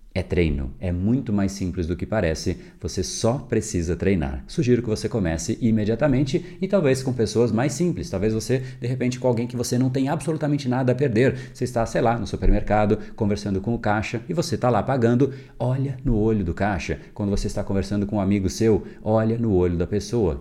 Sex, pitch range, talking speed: male, 90-120 Hz, 210 wpm